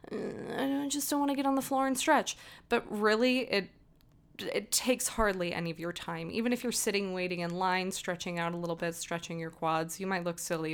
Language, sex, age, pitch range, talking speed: English, female, 20-39, 175-230 Hz, 225 wpm